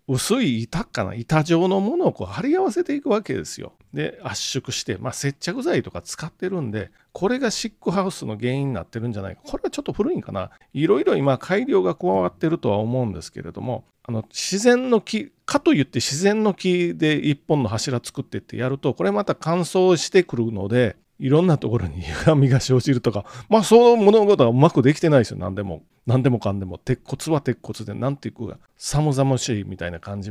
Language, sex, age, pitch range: Japanese, male, 40-59, 115-175 Hz